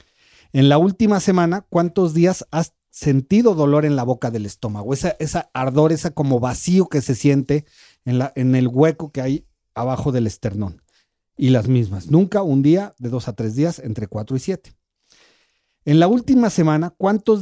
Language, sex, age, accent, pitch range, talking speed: Spanish, male, 40-59, Mexican, 125-160 Hz, 185 wpm